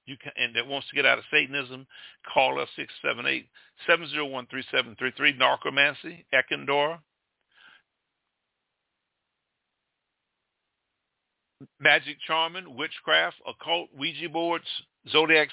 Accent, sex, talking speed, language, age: American, male, 85 wpm, English, 50-69